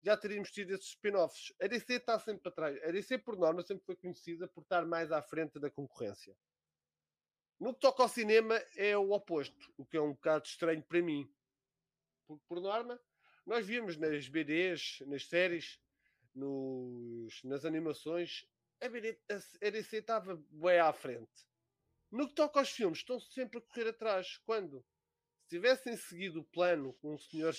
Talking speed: 175 wpm